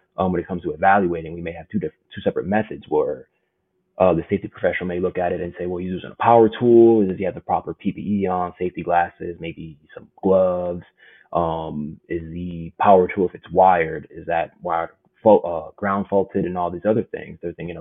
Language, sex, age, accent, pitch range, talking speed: English, male, 20-39, American, 85-110 Hz, 215 wpm